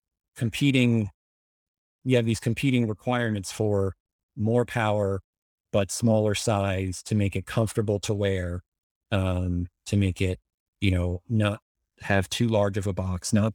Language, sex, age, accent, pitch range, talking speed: English, male, 30-49, American, 90-105 Hz, 140 wpm